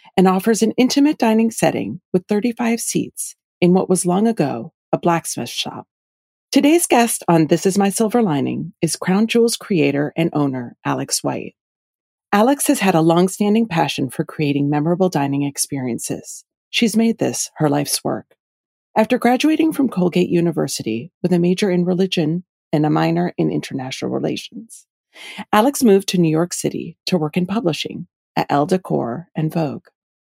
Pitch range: 155-215 Hz